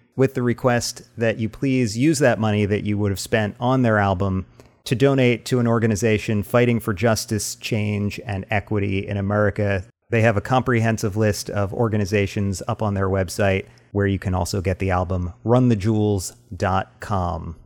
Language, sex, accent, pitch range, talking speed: English, male, American, 100-125 Hz, 165 wpm